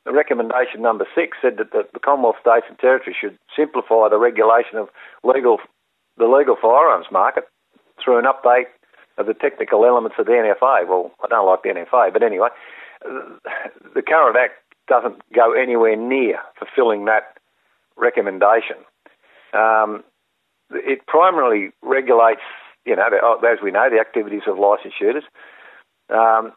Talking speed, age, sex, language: 145 wpm, 50-69, male, English